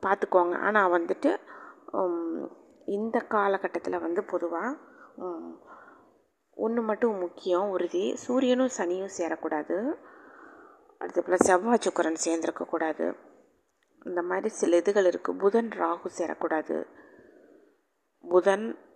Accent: native